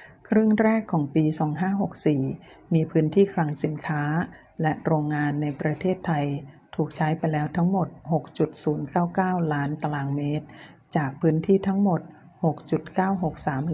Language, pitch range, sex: Thai, 150-175 Hz, female